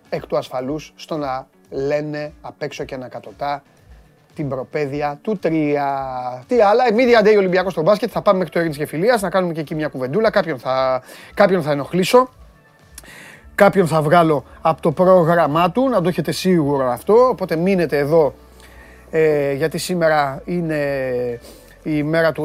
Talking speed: 160 wpm